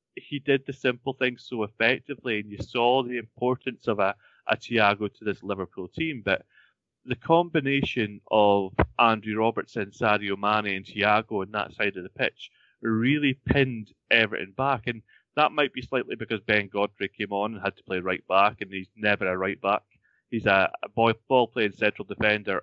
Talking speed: 185 wpm